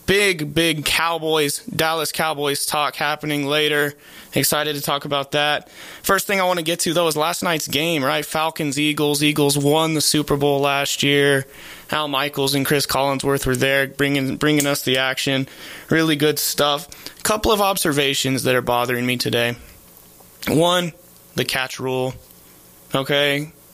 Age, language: 20-39, English